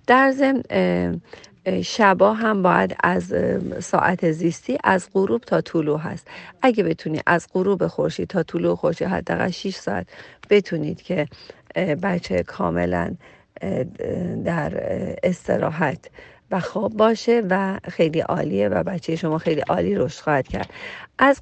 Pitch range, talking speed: 165-225 Hz, 125 wpm